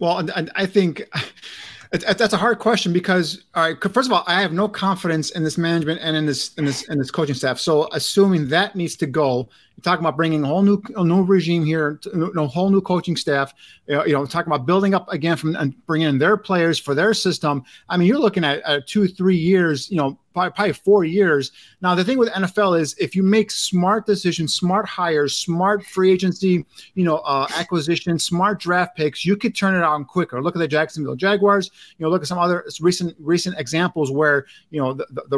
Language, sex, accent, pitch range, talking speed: English, male, American, 150-190 Hz, 220 wpm